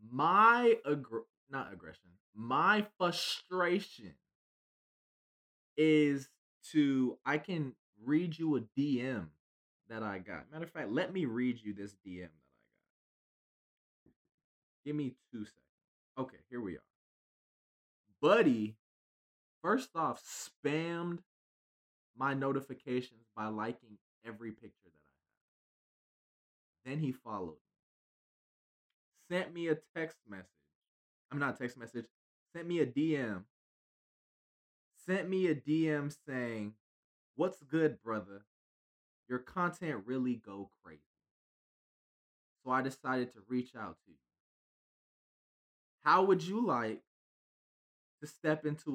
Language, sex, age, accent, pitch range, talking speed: English, male, 20-39, American, 105-150 Hz, 115 wpm